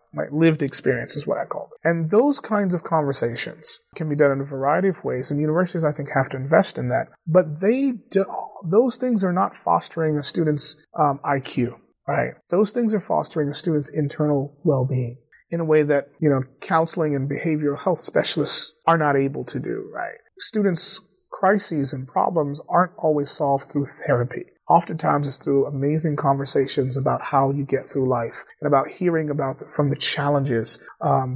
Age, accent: 30-49, American